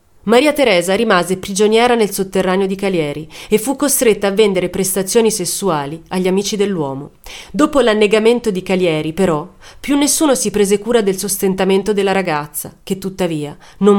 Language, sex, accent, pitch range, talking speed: Italian, female, native, 170-220 Hz, 150 wpm